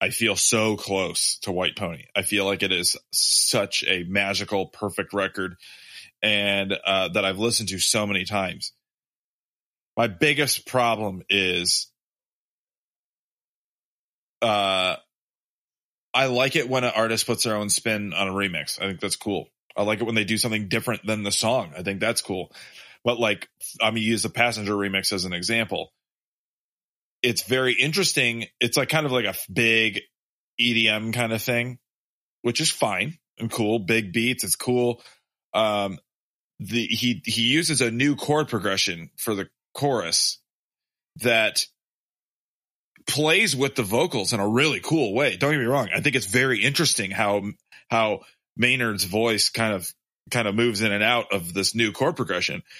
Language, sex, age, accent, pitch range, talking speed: English, male, 20-39, American, 100-125 Hz, 165 wpm